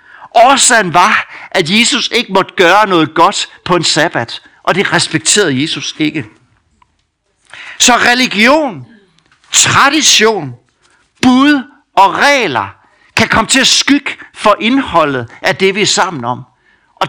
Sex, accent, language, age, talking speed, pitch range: male, native, Danish, 60-79, 130 wpm, 160-230 Hz